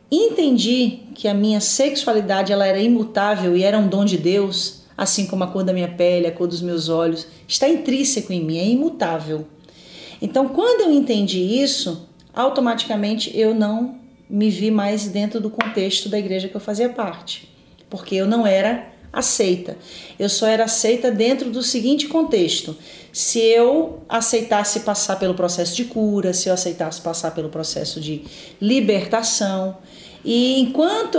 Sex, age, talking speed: female, 40-59, 160 wpm